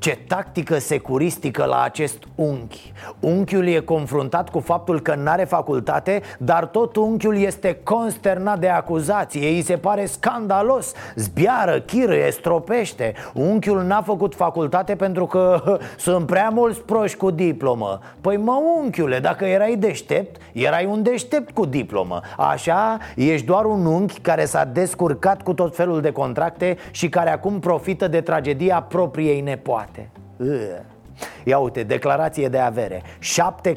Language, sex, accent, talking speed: Romanian, male, native, 140 wpm